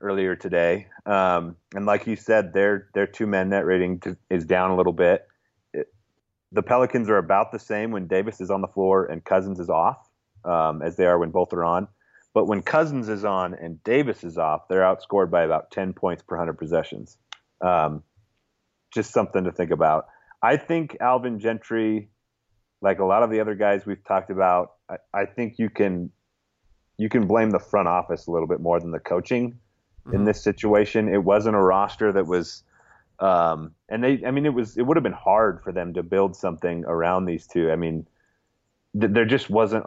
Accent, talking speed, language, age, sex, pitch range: American, 200 wpm, English, 30-49, male, 90-110 Hz